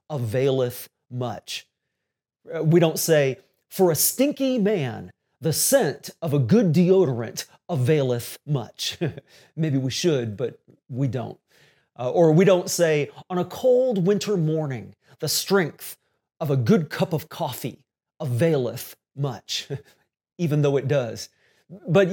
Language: English